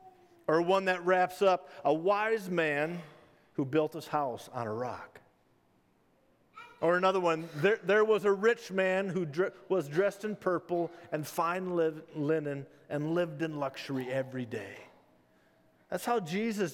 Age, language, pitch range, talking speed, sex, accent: 50-69, English, 155-190 Hz, 145 wpm, male, American